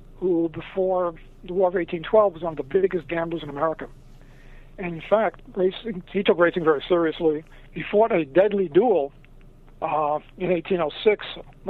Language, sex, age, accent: English, male, 60-79, American